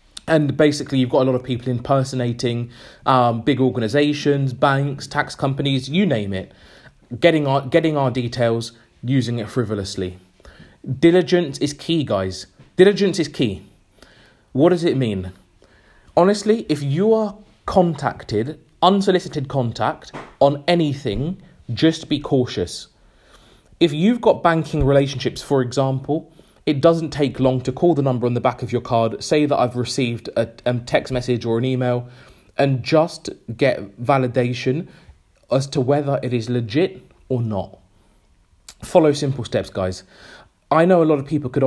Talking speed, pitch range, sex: 150 wpm, 120-150 Hz, male